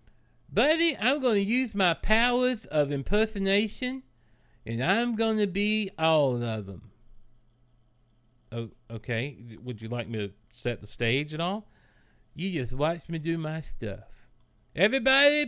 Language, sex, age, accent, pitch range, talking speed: English, male, 40-59, American, 115-185 Hz, 145 wpm